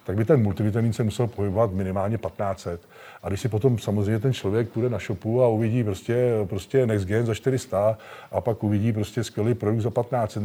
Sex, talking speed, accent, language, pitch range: male, 195 wpm, native, Czech, 110-130 Hz